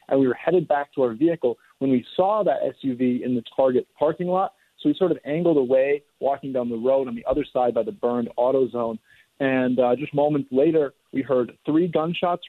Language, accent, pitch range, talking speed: English, American, 120-145 Hz, 220 wpm